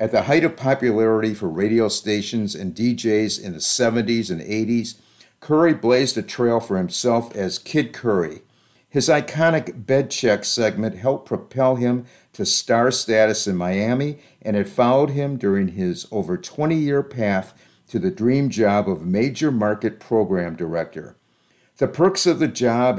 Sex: male